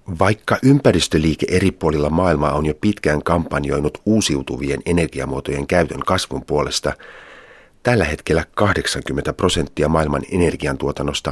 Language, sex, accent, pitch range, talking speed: Finnish, male, native, 75-90 Hz, 105 wpm